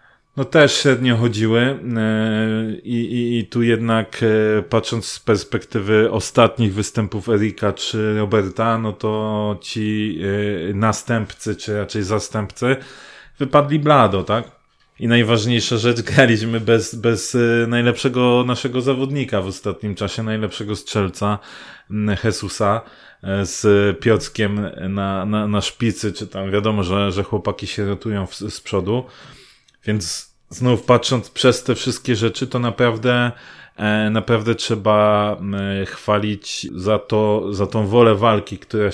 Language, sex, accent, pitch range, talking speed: Polish, male, native, 100-115 Hz, 120 wpm